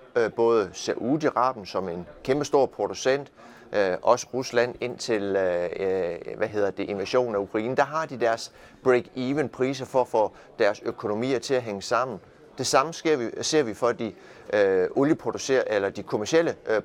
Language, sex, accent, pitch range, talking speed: Danish, male, native, 115-155 Hz, 155 wpm